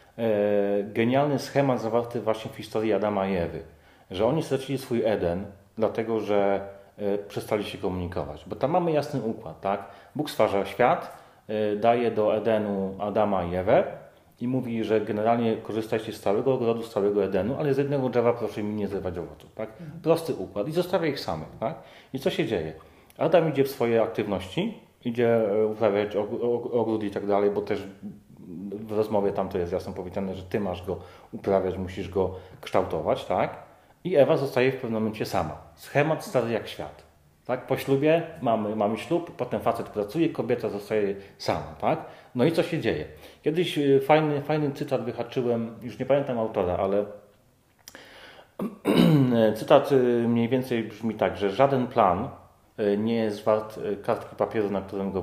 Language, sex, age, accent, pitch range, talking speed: Polish, male, 30-49, native, 100-125 Hz, 165 wpm